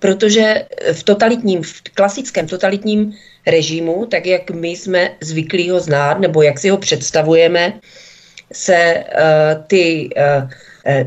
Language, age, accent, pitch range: Czech, 40-59, native, 175-200 Hz